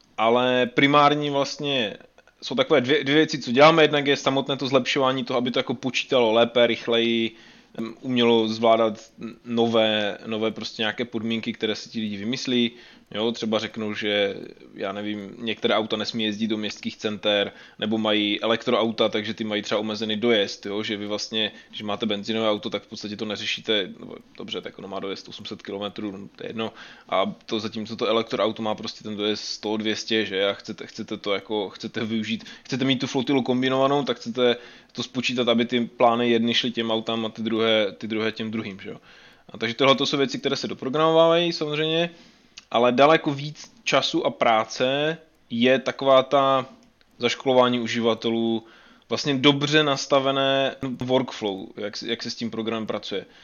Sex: male